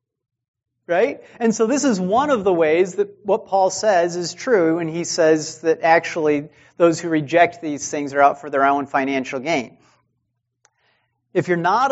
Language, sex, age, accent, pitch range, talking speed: English, male, 40-59, American, 150-235 Hz, 175 wpm